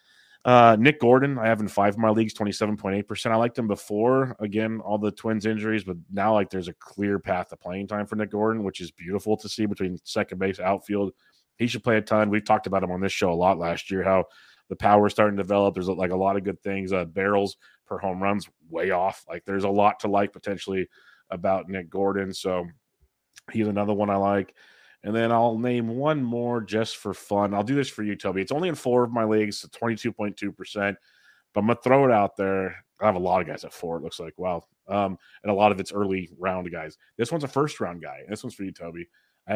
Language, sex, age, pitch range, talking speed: English, male, 30-49, 95-110 Hz, 245 wpm